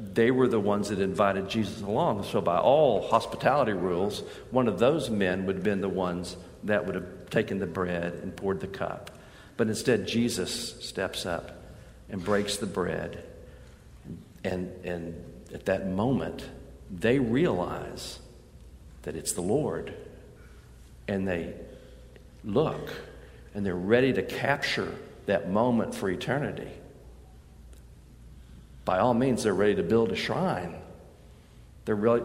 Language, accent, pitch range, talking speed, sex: English, American, 90-125 Hz, 140 wpm, male